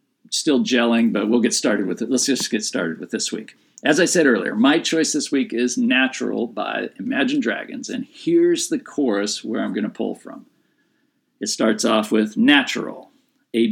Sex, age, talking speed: male, 50-69, 195 wpm